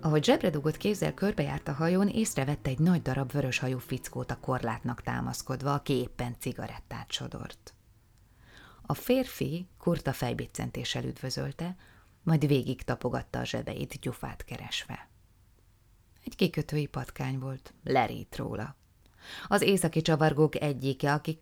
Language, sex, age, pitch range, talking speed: Hungarian, female, 20-39, 120-155 Hz, 120 wpm